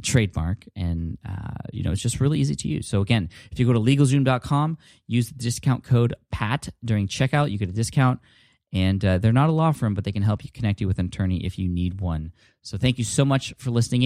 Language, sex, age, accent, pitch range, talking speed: English, male, 20-39, American, 95-125 Hz, 245 wpm